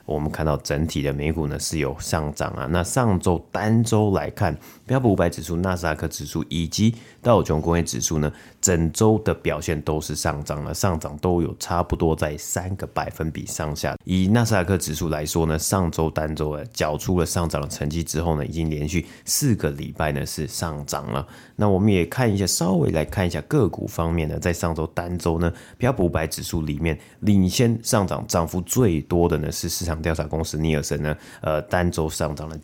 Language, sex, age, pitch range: Chinese, male, 30-49, 75-90 Hz